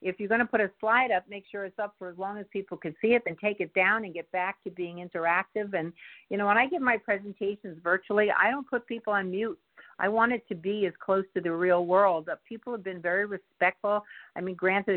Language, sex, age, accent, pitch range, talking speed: English, female, 50-69, American, 170-210 Hz, 255 wpm